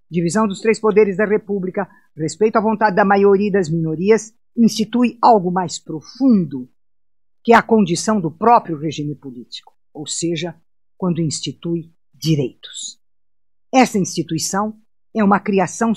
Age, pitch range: 50-69, 165-225 Hz